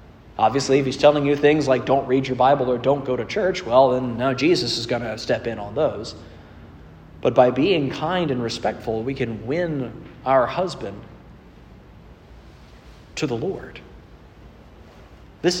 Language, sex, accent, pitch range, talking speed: English, male, American, 110-145 Hz, 160 wpm